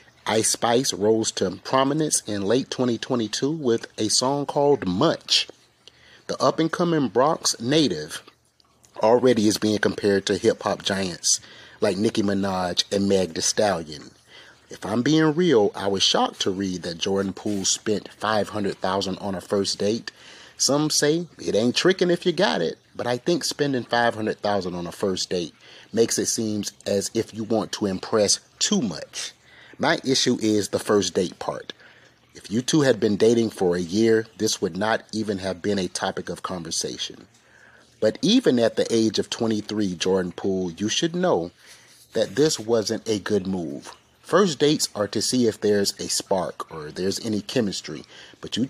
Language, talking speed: English, 170 wpm